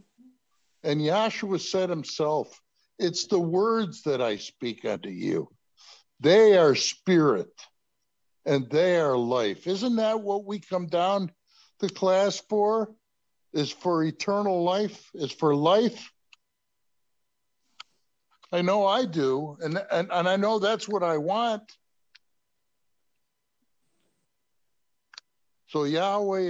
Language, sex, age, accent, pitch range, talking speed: English, male, 60-79, American, 150-205 Hz, 115 wpm